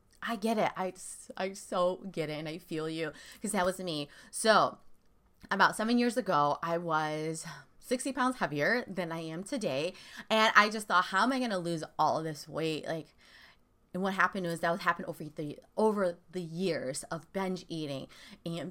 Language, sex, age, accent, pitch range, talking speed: English, female, 20-39, American, 165-210 Hz, 190 wpm